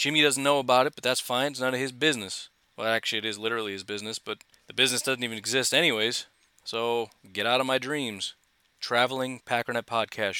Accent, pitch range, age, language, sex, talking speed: American, 115-145 Hz, 30-49, English, male, 210 wpm